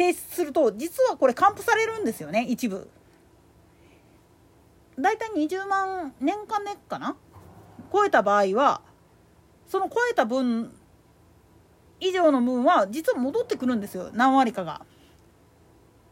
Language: Japanese